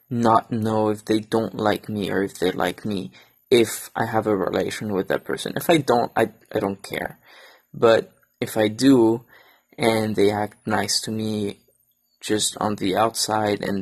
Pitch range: 105-115 Hz